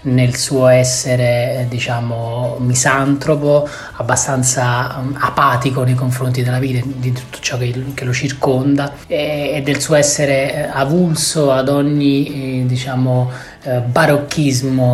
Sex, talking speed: male, 110 wpm